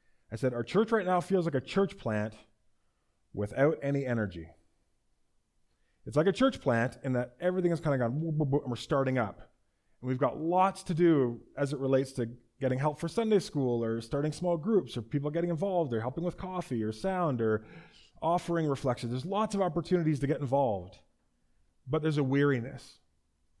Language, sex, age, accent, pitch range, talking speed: English, male, 30-49, American, 115-160 Hz, 185 wpm